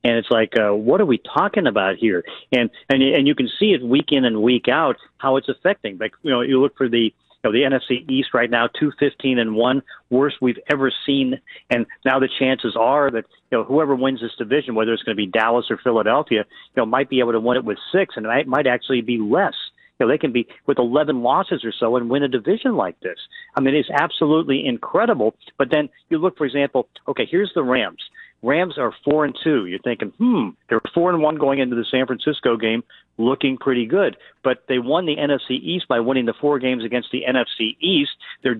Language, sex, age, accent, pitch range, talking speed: English, male, 50-69, American, 120-145 Hz, 230 wpm